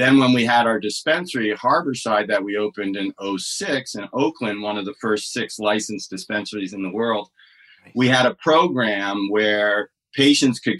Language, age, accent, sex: English, 30-49, American, male